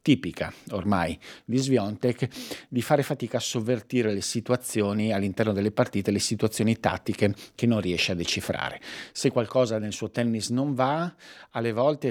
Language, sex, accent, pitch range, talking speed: Italian, male, native, 100-125 Hz, 155 wpm